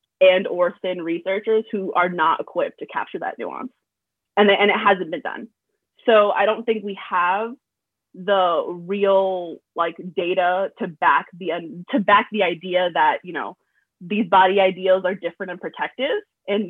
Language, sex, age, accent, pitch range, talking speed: English, female, 20-39, American, 180-210 Hz, 175 wpm